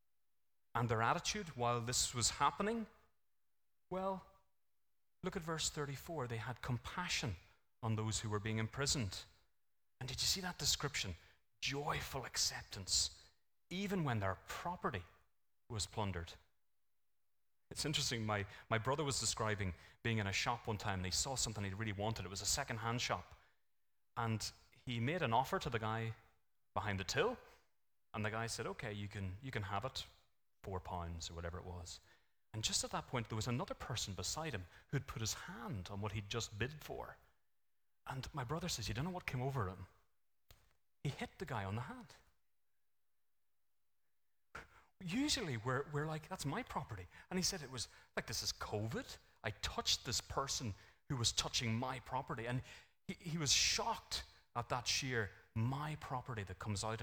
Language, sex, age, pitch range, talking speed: English, male, 30-49, 100-140 Hz, 175 wpm